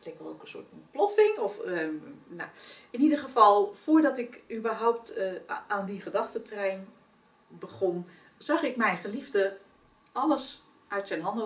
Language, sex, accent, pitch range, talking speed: Dutch, female, Dutch, 190-265 Hz, 150 wpm